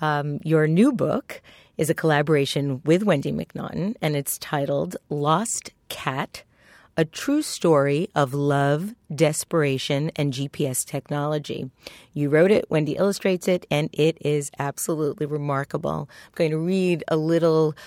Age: 40-59